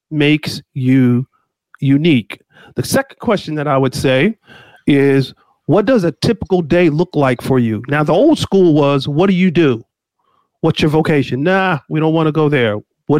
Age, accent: 40-59, American